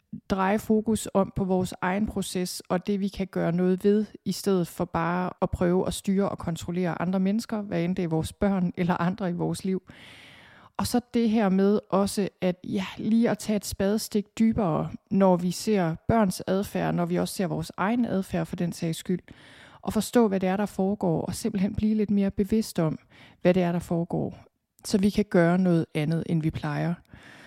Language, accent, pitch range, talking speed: Danish, native, 175-210 Hz, 210 wpm